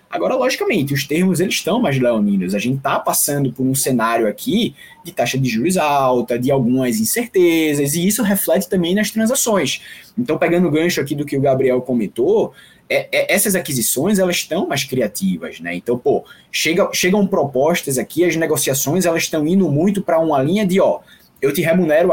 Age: 20-39